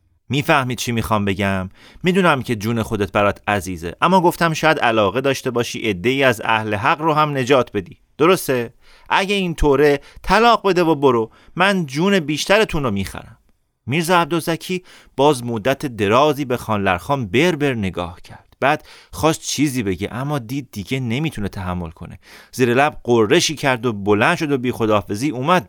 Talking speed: 160 wpm